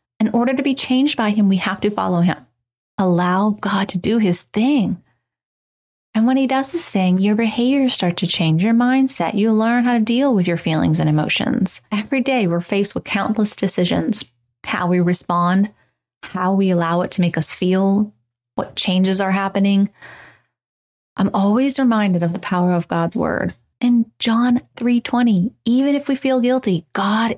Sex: female